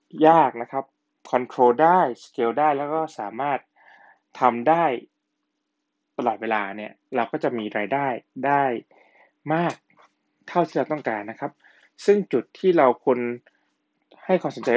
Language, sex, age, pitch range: Thai, male, 20-39, 125-180 Hz